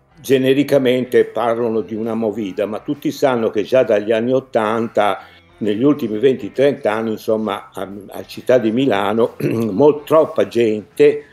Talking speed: 140 wpm